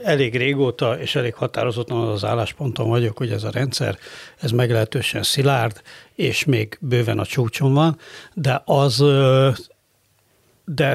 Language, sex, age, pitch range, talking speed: Hungarian, male, 60-79, 120-145 Hz, 130 wpm